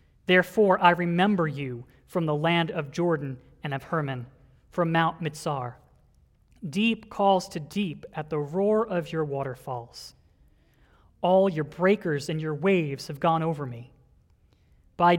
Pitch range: 140-200 Hz